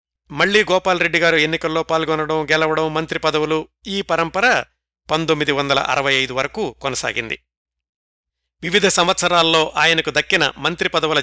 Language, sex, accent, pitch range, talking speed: Telugu, male, native, 140-180 Hz, 95 wpm